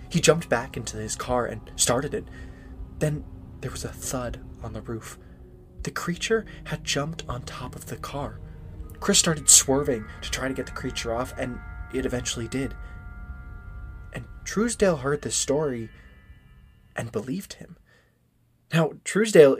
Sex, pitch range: male, 115-170 Hz